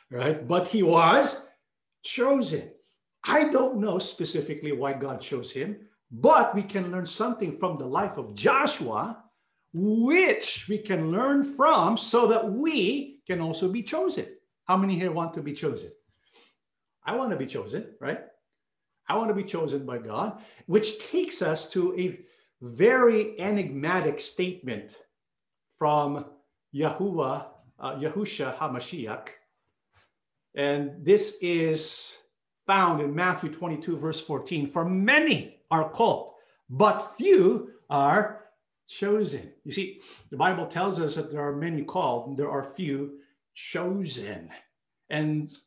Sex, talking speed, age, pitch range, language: male, 135 wpm, 50-69, 155-215 Hz, English